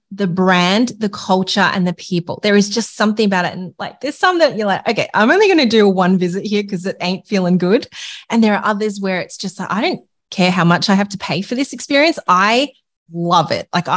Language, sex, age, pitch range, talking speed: English, female, 20-39, 180-210 Hz, 250 wpm